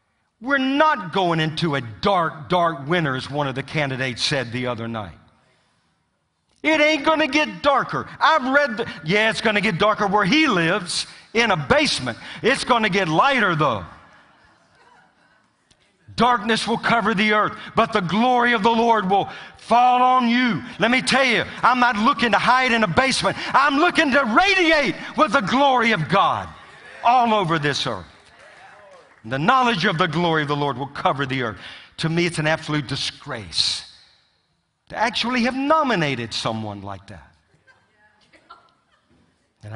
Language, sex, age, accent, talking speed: English, male, 50-69, American, 165 wpm